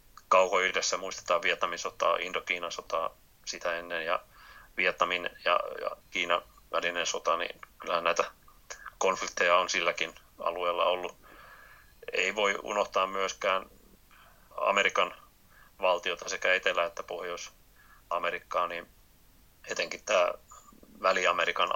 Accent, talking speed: native, 105 wpm